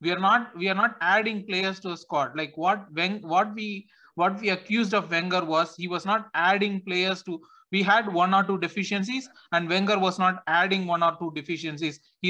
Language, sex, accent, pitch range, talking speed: English, male, Indian, 170-210 Hz, 215 wpm